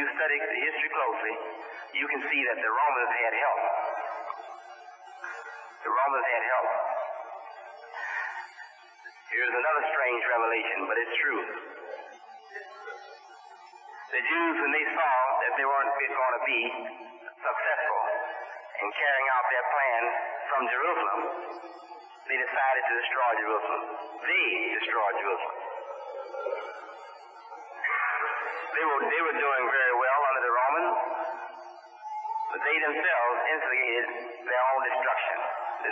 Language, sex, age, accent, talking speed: English, male, 40-59, American, 115 wpm